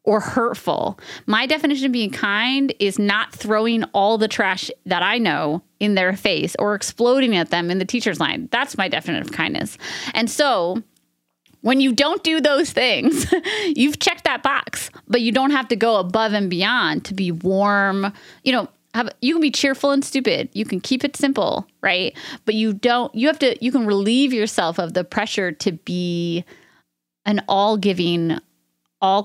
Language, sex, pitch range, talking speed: English, female, 185-250 Hz, 185 wpm